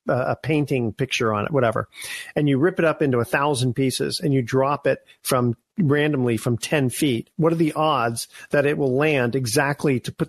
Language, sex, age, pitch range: English, male, 50-69, 135-185 Hz